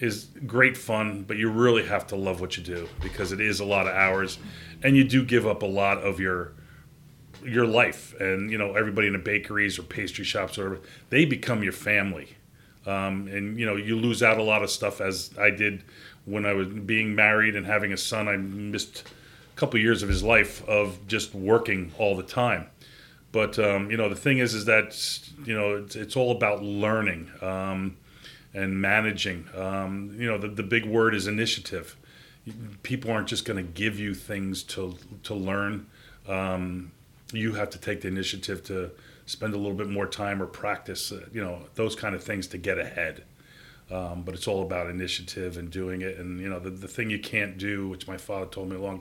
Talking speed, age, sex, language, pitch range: 210 wpm, 30-49, male, English, 95-110 Hz